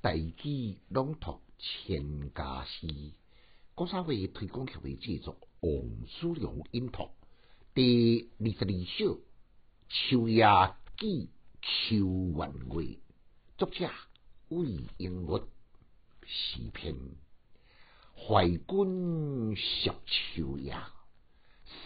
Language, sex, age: Chinese, male, 60-79